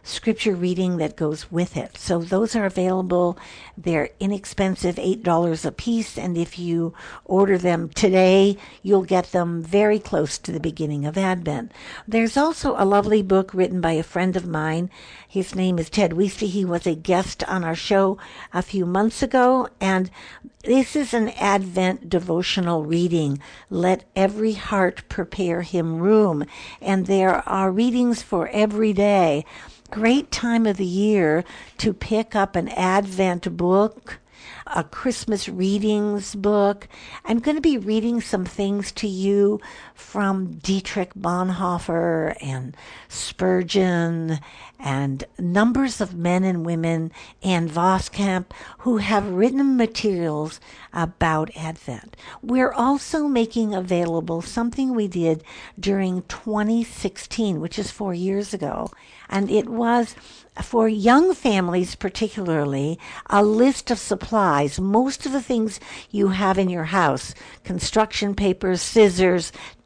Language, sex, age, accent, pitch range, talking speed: English, female, 60-79, American, 175-215 Hz, 135 wpm